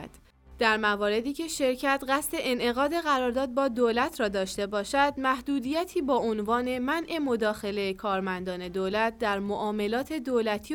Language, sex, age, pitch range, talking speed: Persian, female, 20-39, 210-275 Hz, 125 wpm